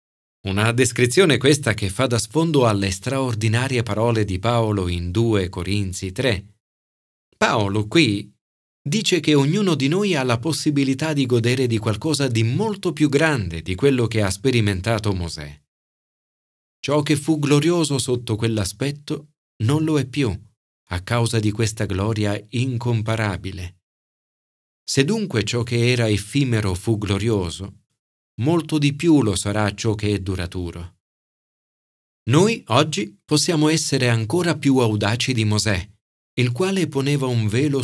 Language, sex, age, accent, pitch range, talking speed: Italian, male, 40-59, native, 100-135 Hz, 140 wpm